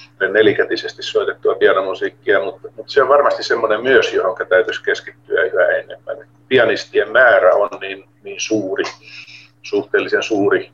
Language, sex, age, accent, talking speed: Finnish, male, 50-69, native, 125 wpm